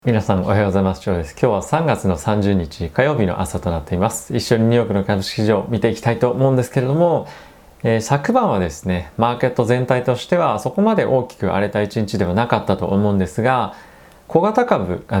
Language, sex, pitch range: Japanese, male, 95-140 Hz